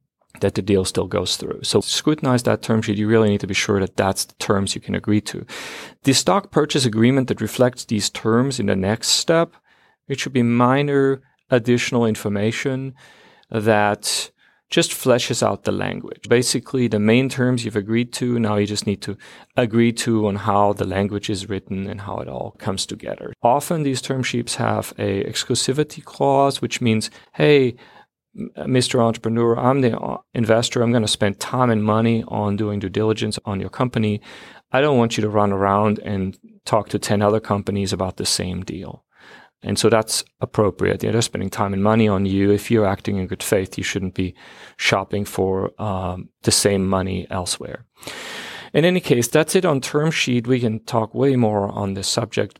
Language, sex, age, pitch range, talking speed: English, male, 40-59, 100-125 Hz, 185 wpm